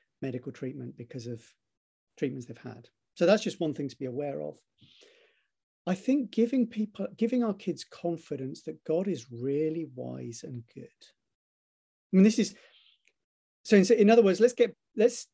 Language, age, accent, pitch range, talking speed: English, 40-59, British, 125-185 Hz, 170 wpm